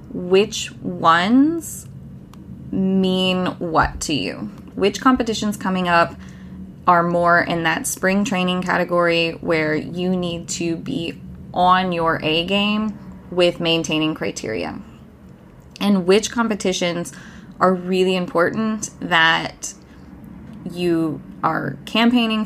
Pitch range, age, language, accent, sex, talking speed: 165-195 Hz, 20-39, English, American, female, 105 wpm